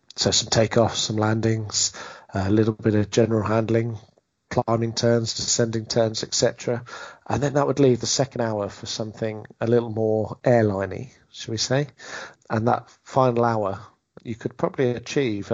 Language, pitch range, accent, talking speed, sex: English, 110-120 Hz, British, 160 wpm, male